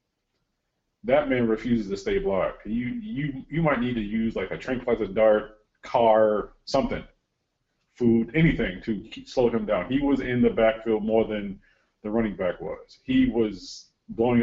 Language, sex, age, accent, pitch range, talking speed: English, male, 40-59, American, 105-130 Hz, 165 wpm